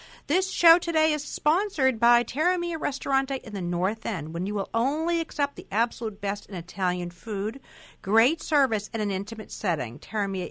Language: English